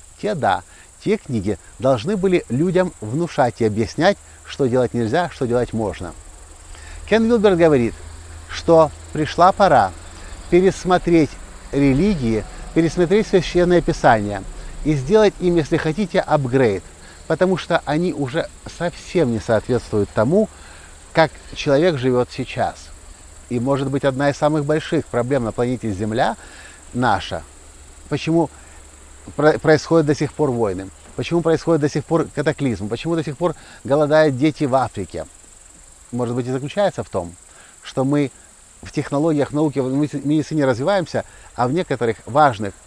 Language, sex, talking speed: Russian, male, 135 wpm